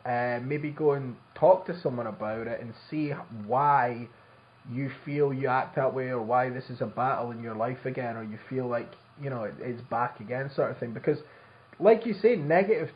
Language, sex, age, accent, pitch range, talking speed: English, male, 20-39, British, 115-140 Hz, 210 wpm